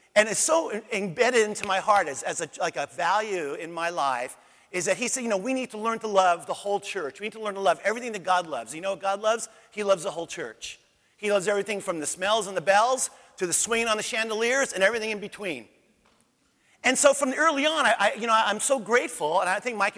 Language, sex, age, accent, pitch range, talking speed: English, male, 40-59, American, 190-235 Hz, 260 wpm